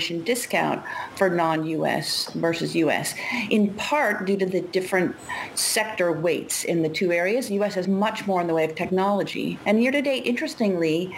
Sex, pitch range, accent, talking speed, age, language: female, 170-235 Hz, American, 160 wpm, 50-69, English